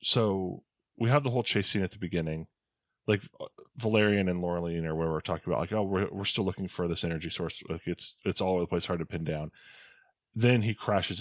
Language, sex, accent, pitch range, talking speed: English, male, American, 80-100 Hz, 235 wpm